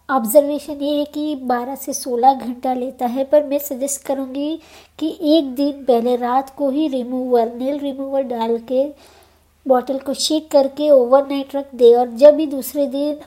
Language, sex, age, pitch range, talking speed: Hindi, male, 50-69, 255-285 Hz, 170 wpm